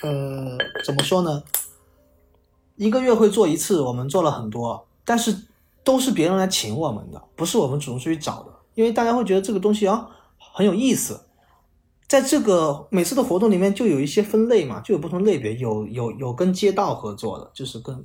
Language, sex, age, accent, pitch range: Chinese, male, 20-39, native, 110-180 Hz